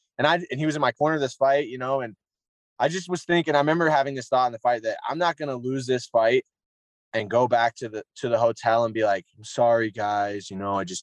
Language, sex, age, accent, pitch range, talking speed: English, male, 20-39, American, 115-155 Hz, 285 wpm